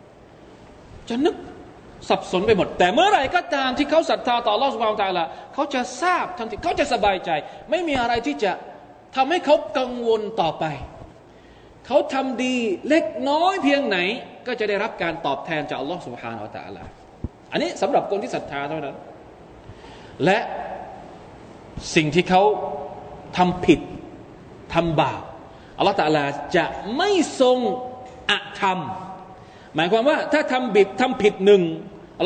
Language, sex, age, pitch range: Thai, male, 20-39, 155-260 Hz